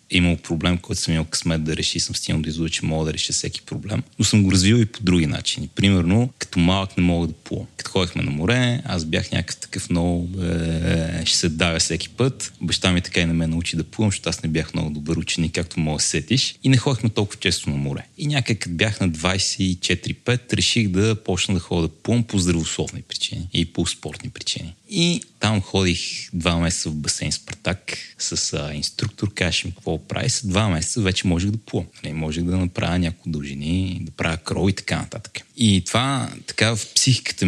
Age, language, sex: 30-49, Bulgarian, male